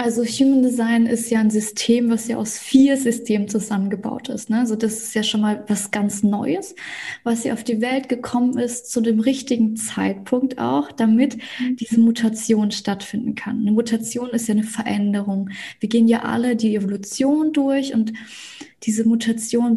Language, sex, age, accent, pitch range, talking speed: German, female, 20-39, German, 215-255 Hz, 175 wpm